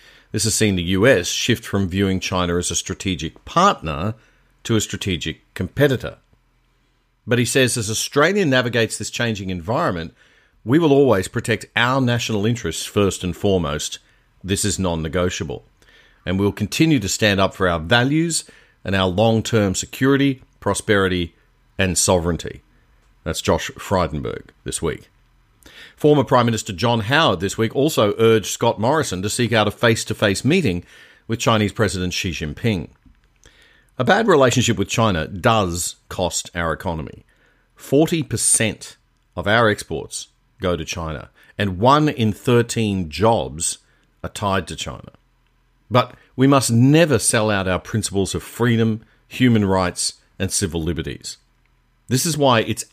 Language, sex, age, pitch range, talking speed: English, male, 50-69, 95-120 Hz, 145 wpm